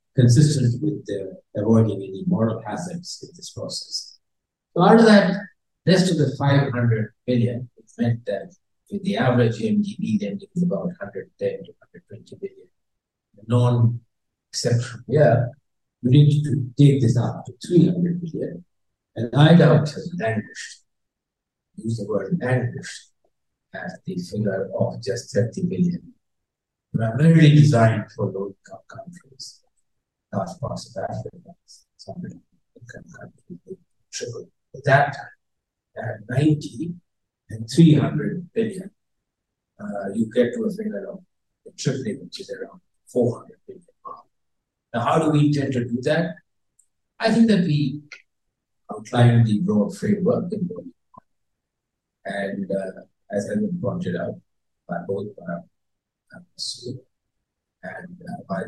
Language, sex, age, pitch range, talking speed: English, male, 60-79, 115-180 Hz, 125 wpm